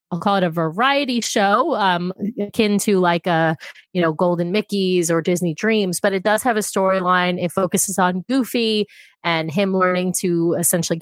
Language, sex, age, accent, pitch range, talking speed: English, female, 30-49, American, 175-215 Hz, 180 wpm